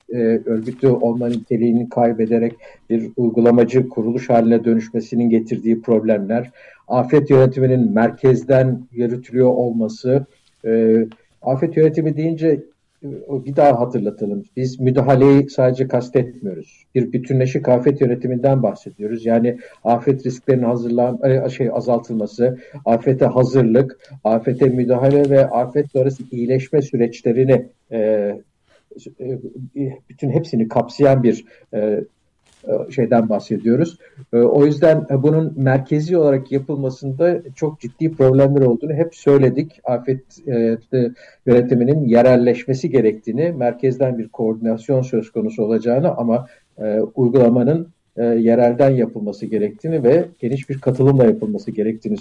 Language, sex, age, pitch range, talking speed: Turkish, male, 50-69, 115-135 Hz, 100 wpm